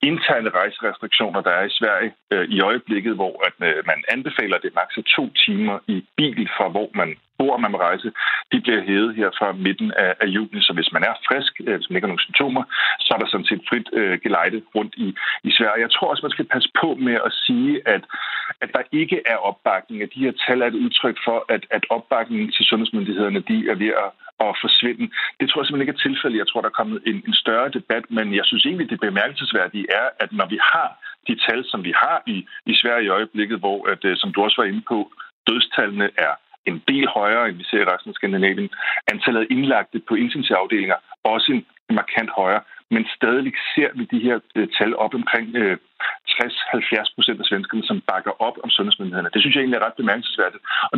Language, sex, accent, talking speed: Danish, male, native, 220 wpm